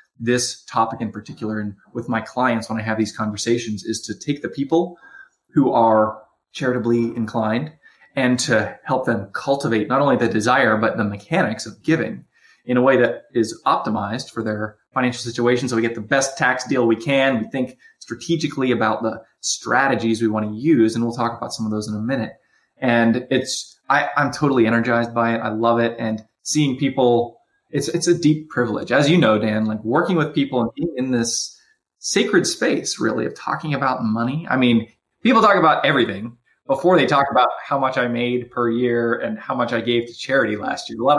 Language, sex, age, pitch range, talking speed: English, male, 20-39, 110-130 Hz, 205 wpm